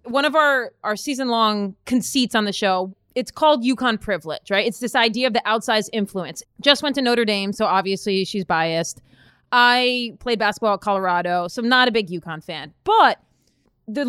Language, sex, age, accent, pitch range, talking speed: English, female, 30-49, American, 205-260 Hz, 190 wpm